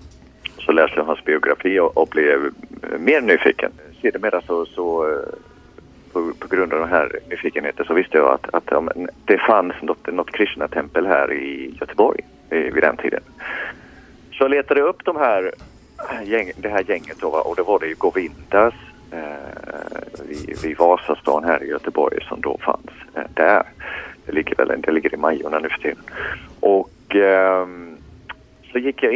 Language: Swedish